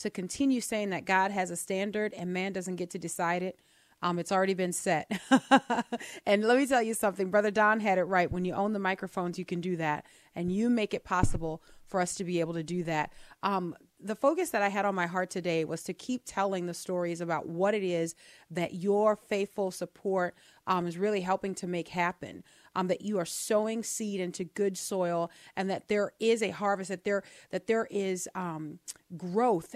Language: English